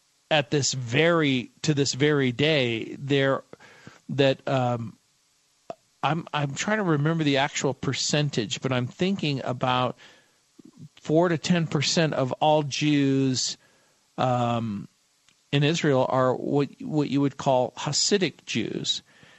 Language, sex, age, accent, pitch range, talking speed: English, male, 50-69, American, 135-155 Hz, 120 wpm